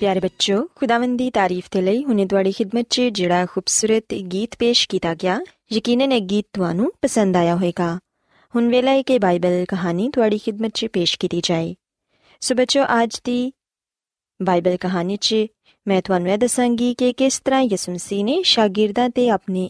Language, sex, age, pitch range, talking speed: Punjabi, female, 20-39, 185-255 Hz, 170 wpm